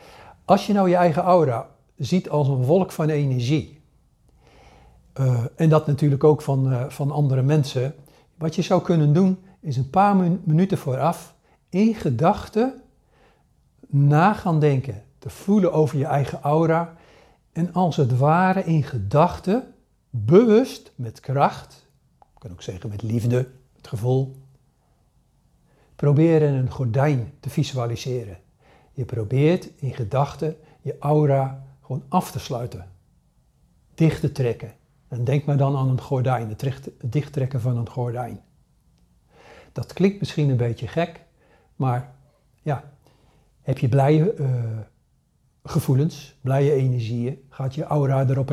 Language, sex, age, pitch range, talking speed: Dutch, male, 60-79, 125-155 Hz, 135 wpm